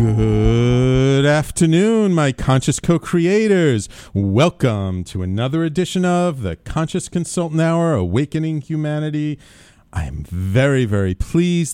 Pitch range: 105-165 Hz